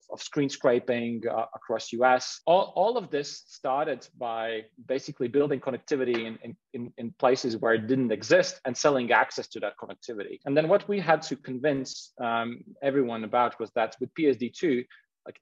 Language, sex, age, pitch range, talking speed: English, male, 30-49, 115-135 Hz, 175 wpm